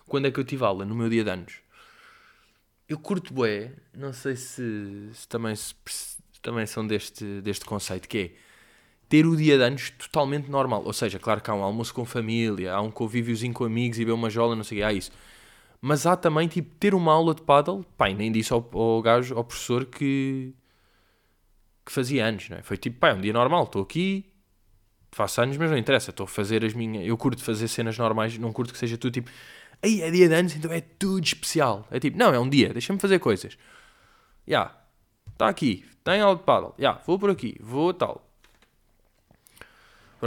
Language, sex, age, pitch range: Portuguese, male, 20-39, 100-130 Hz